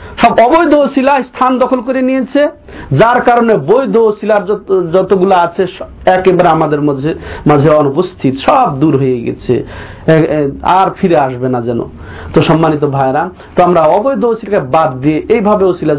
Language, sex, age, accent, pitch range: Bengali, male, 50-69, native, 130-190 Hz